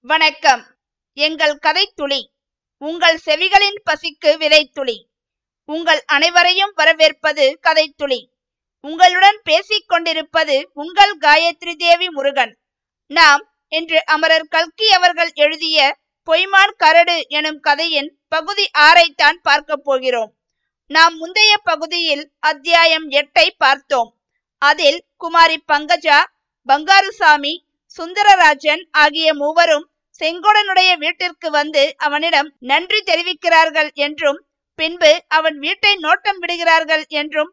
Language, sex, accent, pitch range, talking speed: Tamil, female, native, 295-345 Hz, 95 wpm